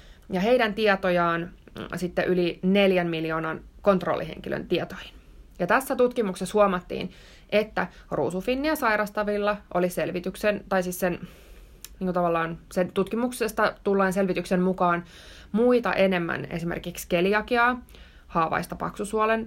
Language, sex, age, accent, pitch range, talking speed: Finnish, female, 20-39, native, 175-210 Hz, 100 wpm